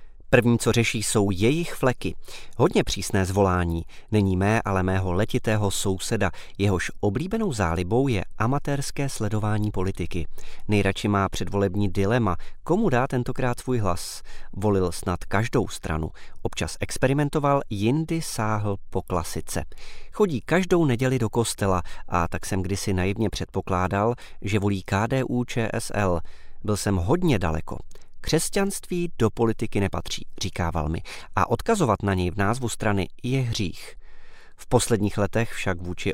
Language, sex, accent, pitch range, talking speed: Czech, male, native, 95-125 Hz, 135 wpm